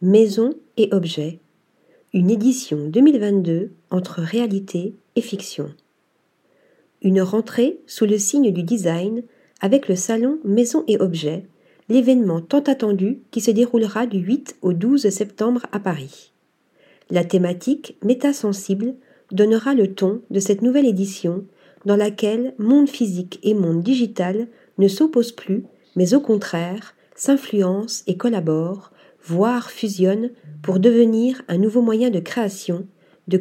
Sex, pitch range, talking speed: female, 185-240 Hz, 130 wpm